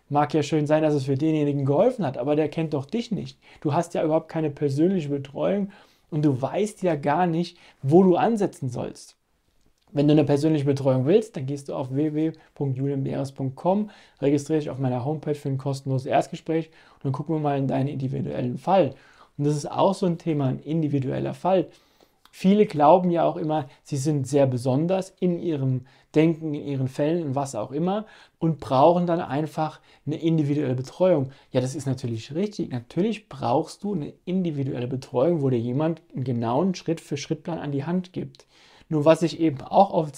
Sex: male